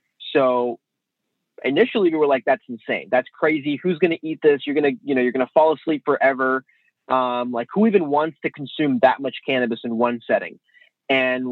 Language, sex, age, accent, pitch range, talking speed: English, male, 20-39, American, 130-165 Hz, 190 wpm